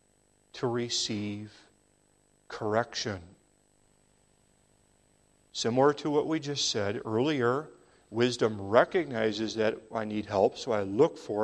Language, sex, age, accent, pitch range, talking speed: English, male, 40-59, American, 105-135 Hz, 105 wpm